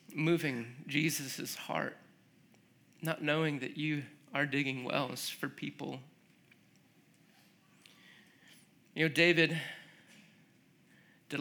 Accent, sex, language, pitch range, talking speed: American, male, English, 130-155 Hz, 85 wpm